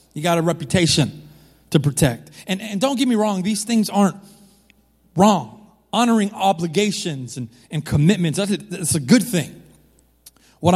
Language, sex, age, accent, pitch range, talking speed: English, male, 30-49, American, 160-210 Hz, 155 wpm